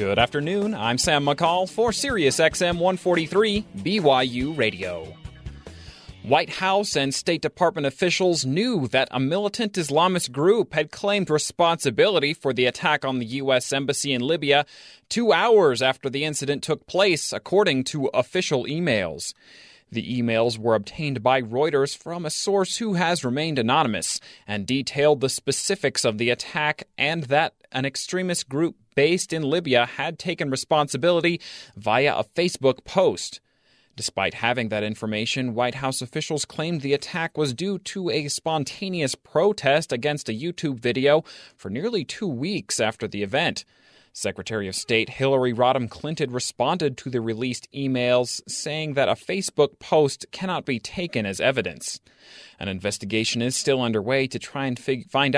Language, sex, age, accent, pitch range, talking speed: English, male, 30-49, American, 125-170 Hz, 150 wpm